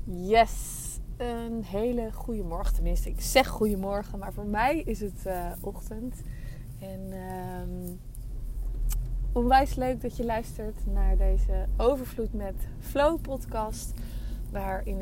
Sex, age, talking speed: female, 20-39, 125 wpm